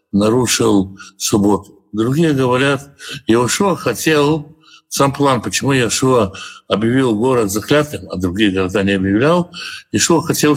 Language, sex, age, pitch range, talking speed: Russian, male, 60-79, 110-155 Hz, 115 wpm